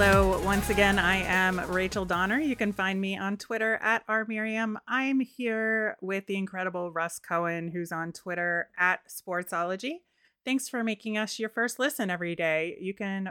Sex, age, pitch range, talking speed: female, 30-49, 175-215 Hz, 170 wpm